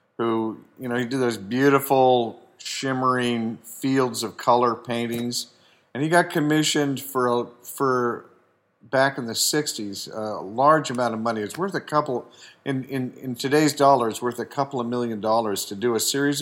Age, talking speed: 50-69, 170 wpm